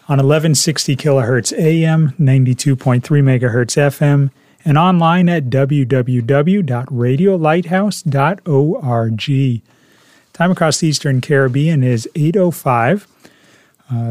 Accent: American